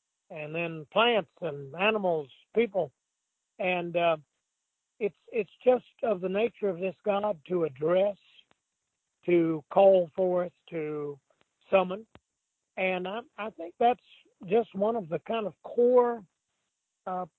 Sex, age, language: male, 60-79, English